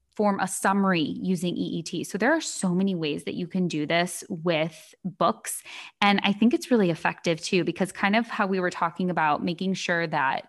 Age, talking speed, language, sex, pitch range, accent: 20-39, 205 wpm, English, female, 175-215 Hz, American